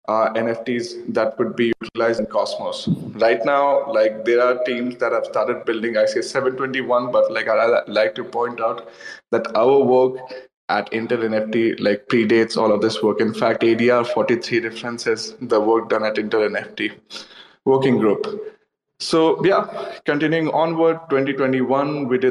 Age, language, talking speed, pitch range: 20-39, English, 155 wpm, 115-130 Hz